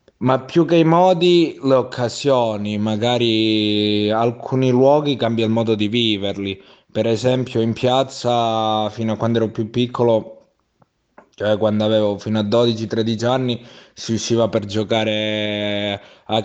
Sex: male